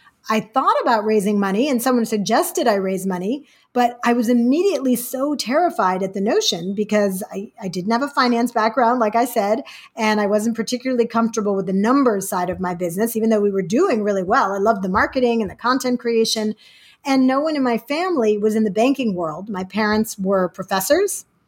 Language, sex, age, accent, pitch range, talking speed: English, female, 40-59, American, 205-260 Hz, 205 wpm